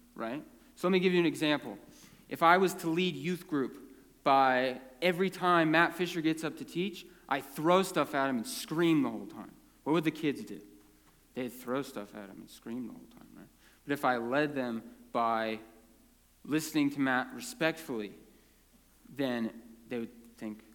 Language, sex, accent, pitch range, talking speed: English, male, American, 135-195 Hz, 185 wpm